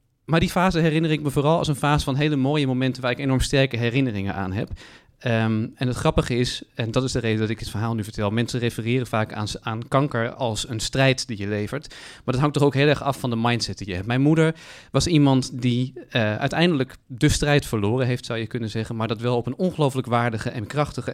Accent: Dutch